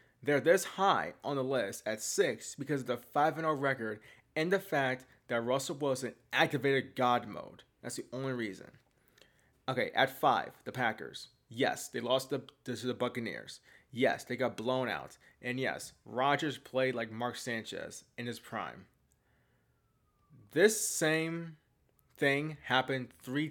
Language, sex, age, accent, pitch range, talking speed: English, male, 20-39, American, 120-150 Hz, 150 wpm